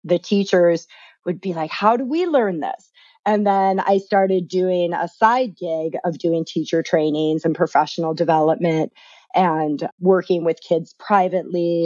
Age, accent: 30-49, American